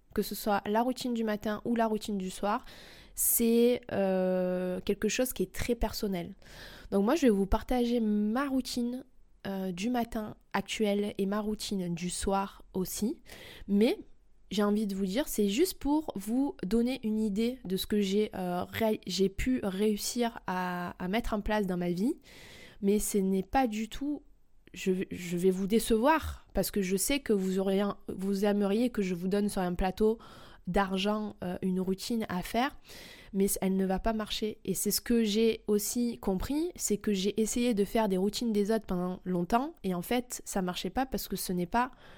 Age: 20-39